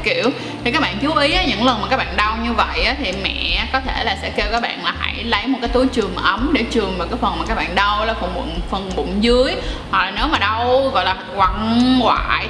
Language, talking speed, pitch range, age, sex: Vietnamese, 275 wpm, 215-260 Hz, 20-39, female